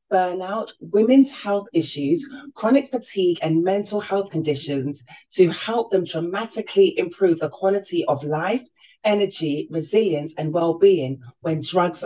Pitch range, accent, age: 160-220 Hz, British, 40-59